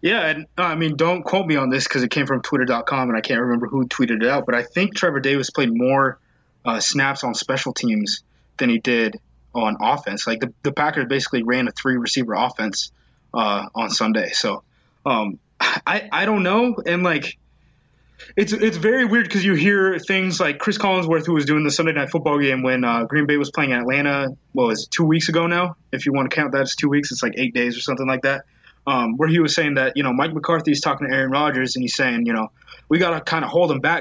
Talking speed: 245 wpm